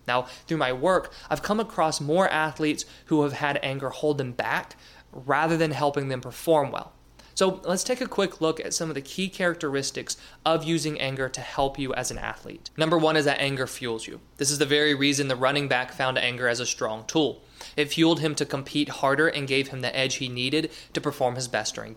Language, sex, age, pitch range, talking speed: English, male, 20-39, 130-155 Hz, 225 wpm